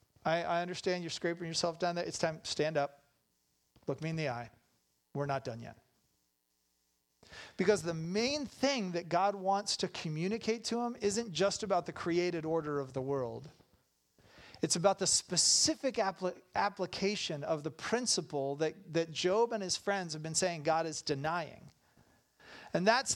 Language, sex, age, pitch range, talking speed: English, male, 40-59, 140-210 Hz, 165 wpm